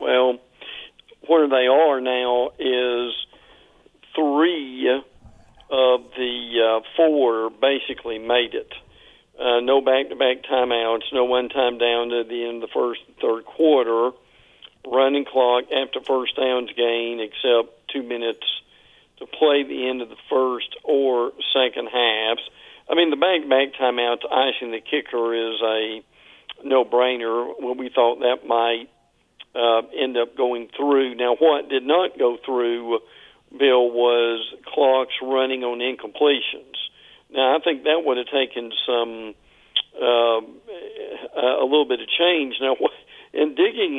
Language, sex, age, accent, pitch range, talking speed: English, male, 50-69, American, 120-135 Hz, 140 wpm